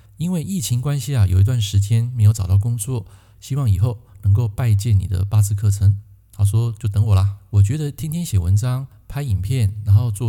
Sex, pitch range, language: male, 100-130 Hz, Chinese